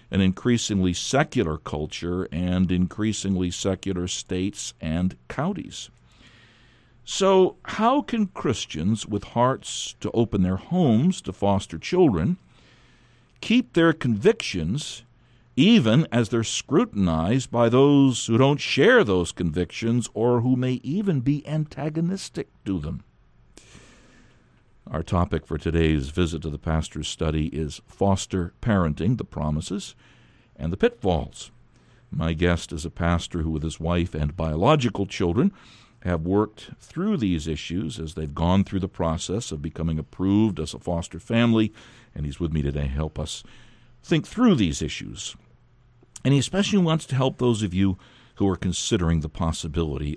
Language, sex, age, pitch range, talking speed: English, male, 60-79, 85-120 Hz, 140 wpm